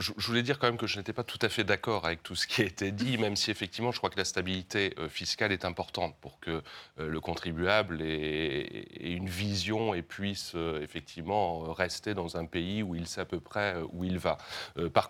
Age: 30-49